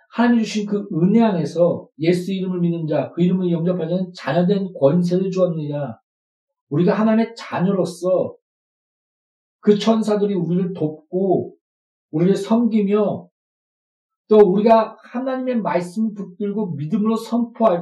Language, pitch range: Korean, 180-225 Hz